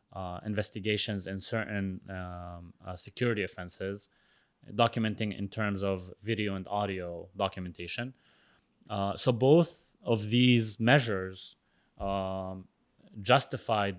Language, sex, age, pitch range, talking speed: Arabic, male, 20-39, 100-125 Hz, 105 wpm